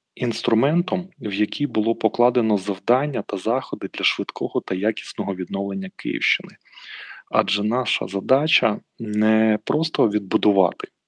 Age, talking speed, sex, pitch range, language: 30-49, 110 wpm, male, 100-130 Hz, Ukrainian